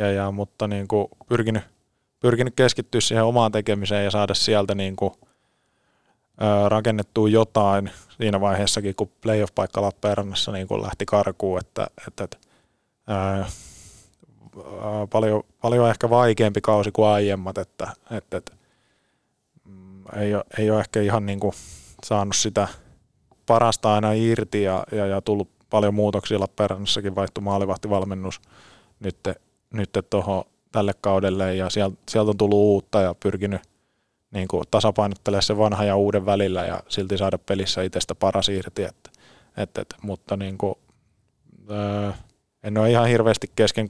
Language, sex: Finnish, male